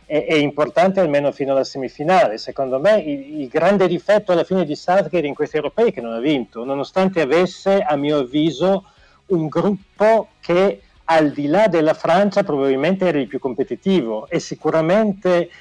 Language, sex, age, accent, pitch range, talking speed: Italian, male, 40-59, native, 140-185 Hz, 170 wpm